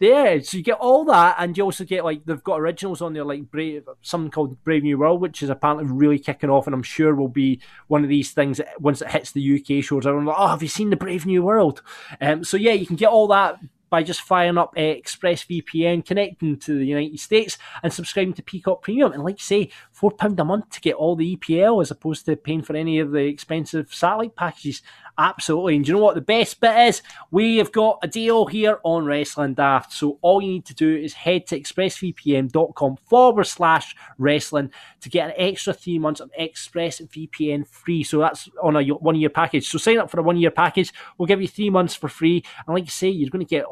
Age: 20-39